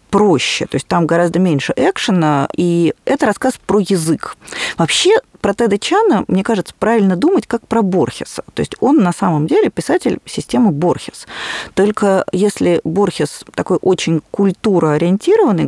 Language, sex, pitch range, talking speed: Russian, female, 180-230 Hz, 140 wpm